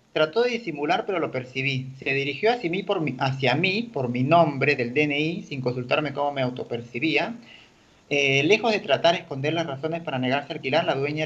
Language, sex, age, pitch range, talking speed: Spanish, male, 40-59, 130-165 Hz, 180 wpm